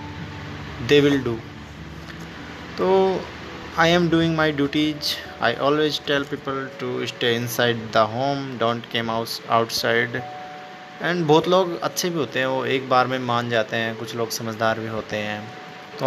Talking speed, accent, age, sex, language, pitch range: 155 wpm, native, 20-39, male, Hindi, 115-150 Hz